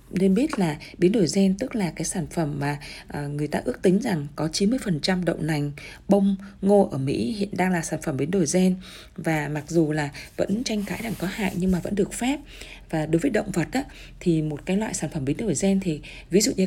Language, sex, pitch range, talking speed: Vietnamese, female, 155-195 Hz, 240 wpm